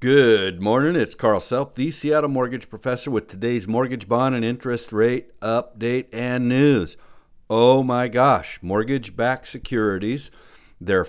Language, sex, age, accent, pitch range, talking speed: English, male, 60-79, American, 100-130 Hz, 135 wpm